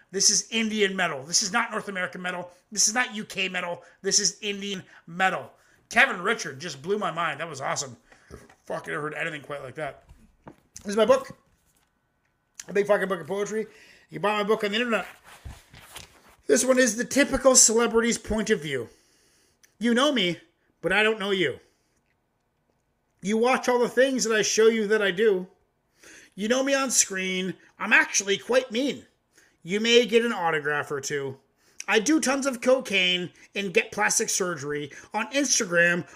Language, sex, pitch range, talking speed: English, male, 185-250 Hz, 180 wpm